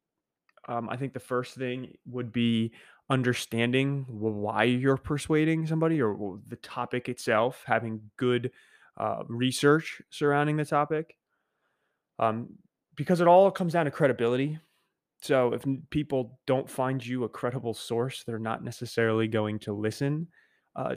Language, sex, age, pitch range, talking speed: English, male, 20-39, 110-135 Hz, 135 wpm